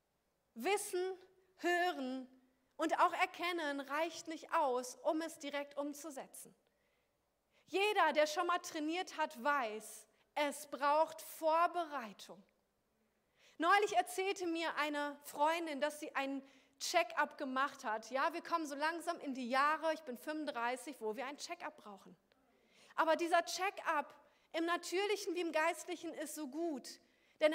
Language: German